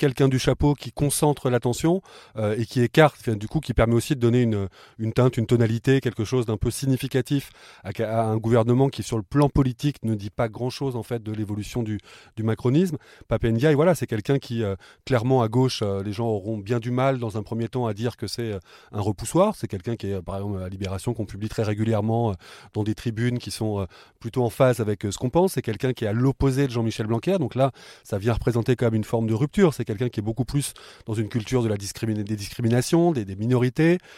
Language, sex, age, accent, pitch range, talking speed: French, male, 20-39, French, 110-130 Hz, 245 wpm